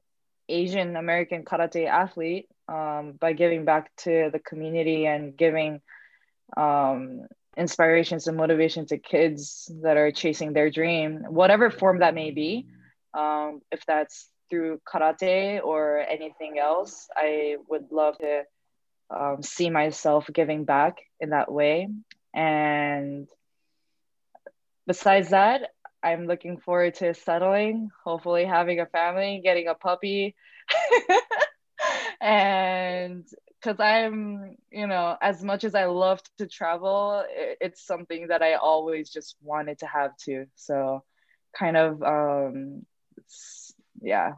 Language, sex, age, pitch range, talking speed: English, female, 20-39, 150-190 Hz, 125 wpm